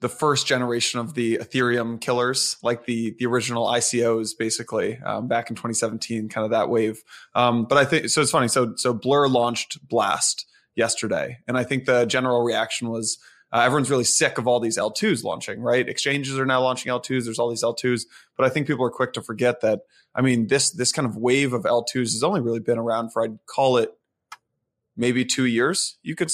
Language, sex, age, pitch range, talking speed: English, male, 20-39, 115-130 Hz, 210 wpm